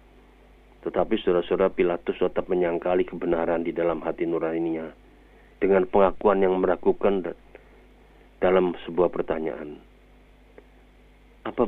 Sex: male